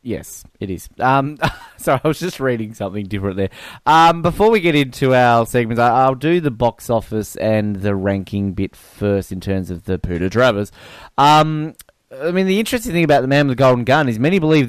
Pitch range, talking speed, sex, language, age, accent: 110-145 Hz, 210 wpm, male, English, 20-39, Australian